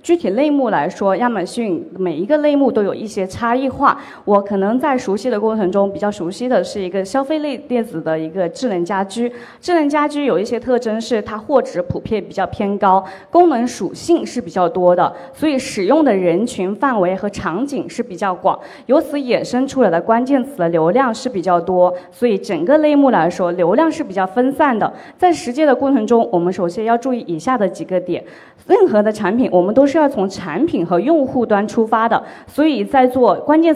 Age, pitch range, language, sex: 20-39, 190-285 Hz, Chinese, female